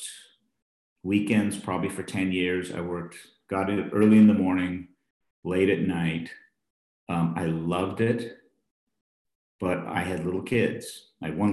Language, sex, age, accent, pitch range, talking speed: English, male, 50-69, American, 90-120 Hz, 145 wpm